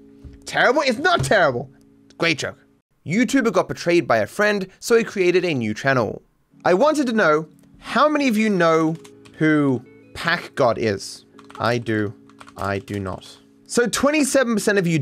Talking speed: 160 wpm